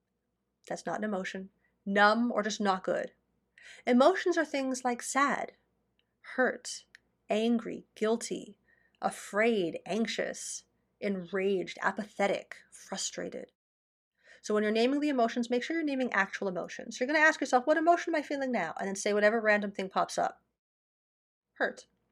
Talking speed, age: 145 wpm, 30-49